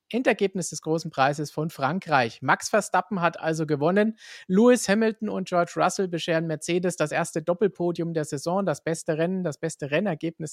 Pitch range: 145-175 Hz